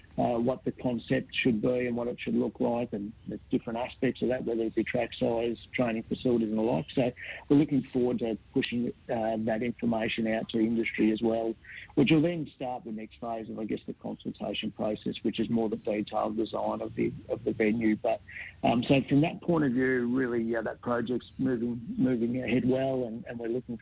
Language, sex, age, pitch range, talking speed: English, male, 50-69, 110-125 Hz, 215 wpm